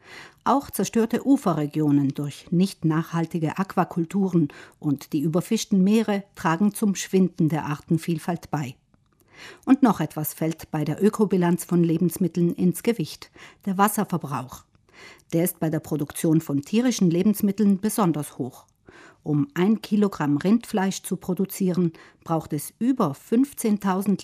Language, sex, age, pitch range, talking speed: German, female, 50-69, 155-205 Hz, 125 wpm